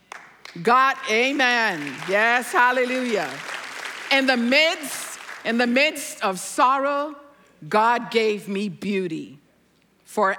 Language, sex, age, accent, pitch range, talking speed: English, female, 50-69, American, 215-315 Hz, 100 wpm